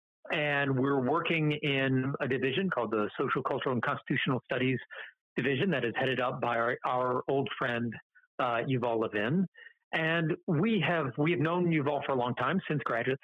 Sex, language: male, English